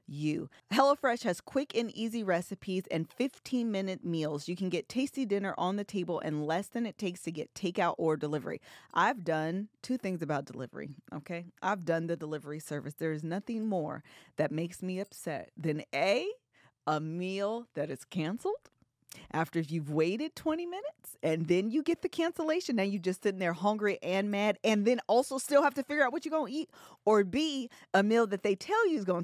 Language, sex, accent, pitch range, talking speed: English, female, American, 170-235 Hz, 205 wpm